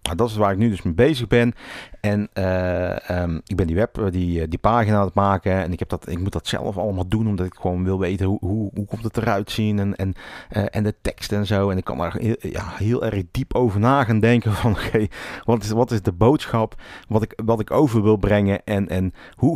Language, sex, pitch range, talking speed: Dutch, male, 90-115 Hz, 265 wpm